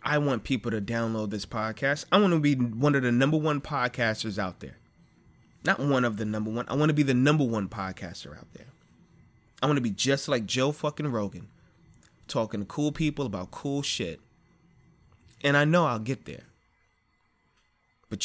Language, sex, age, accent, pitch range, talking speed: English, male, 20-39, American, 100-140 Hz, 190 wpm